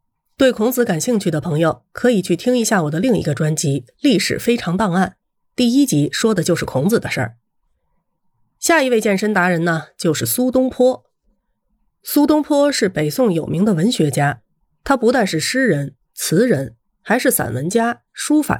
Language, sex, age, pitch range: Chinese, female, 30-49, 155-250 Hz